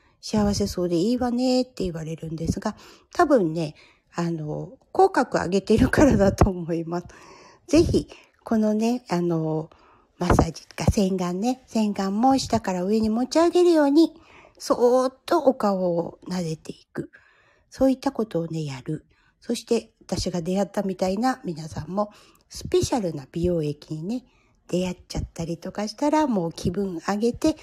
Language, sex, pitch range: Japanese, female, 175-250 Hz